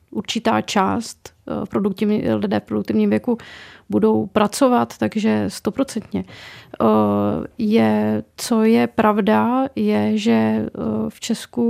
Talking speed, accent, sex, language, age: 110 wpm, native, female, Czech, 30-49